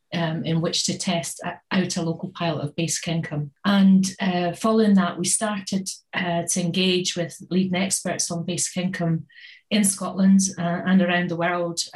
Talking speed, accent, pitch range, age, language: 170 wpm, British, 165-190 Hz, 30-49, English